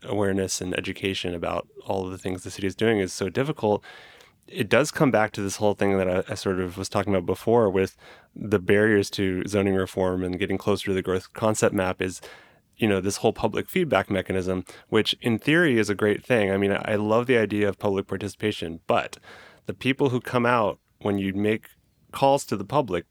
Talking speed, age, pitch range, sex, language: 215 wpm, 30-49, 95-115 Hz, male, English